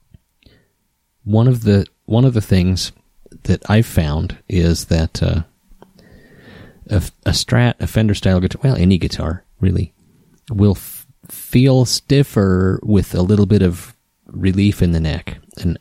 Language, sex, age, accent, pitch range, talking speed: English, male, 30-49, American, 85-105 Hz, 145 wpm